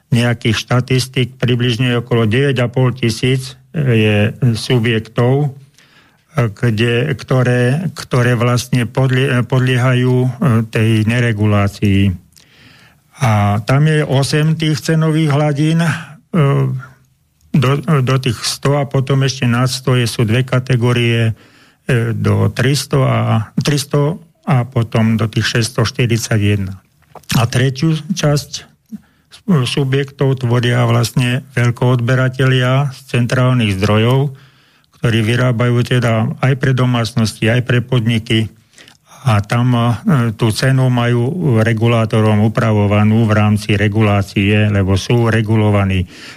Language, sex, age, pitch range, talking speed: Slovak, male, 50-69, 115-135 Hz, 100 wpm